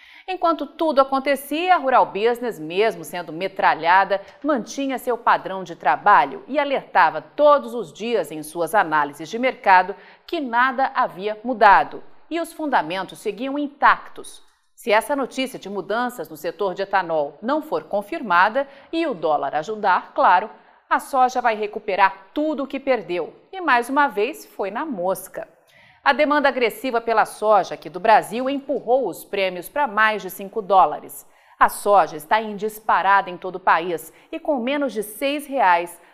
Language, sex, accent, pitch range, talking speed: Portuguese, female, Brazilian, 190-270 Hz, 160 wpm